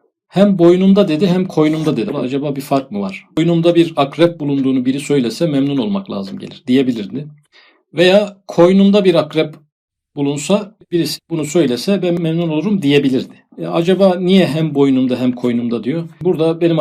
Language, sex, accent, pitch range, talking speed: Turkish, male, native, 130-170 Hz, 160 wpm